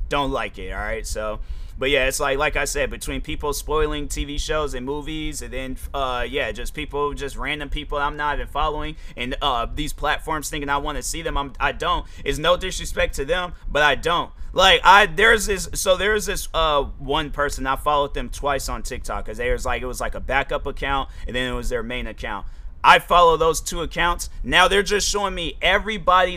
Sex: male